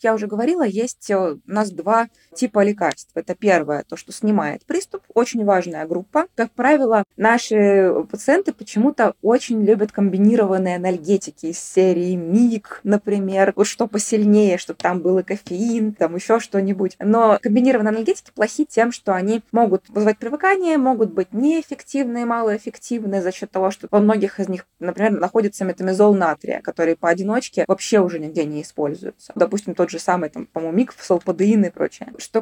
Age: 20-39